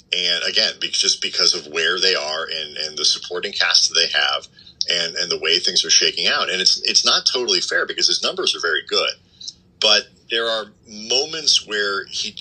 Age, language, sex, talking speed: 30-49, English, male, 205 wpm